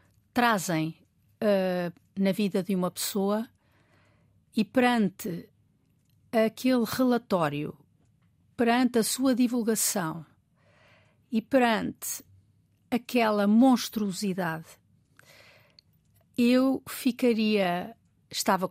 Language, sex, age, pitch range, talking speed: Portuguese, female, 50-69, 180-235 Hz, 65 wpm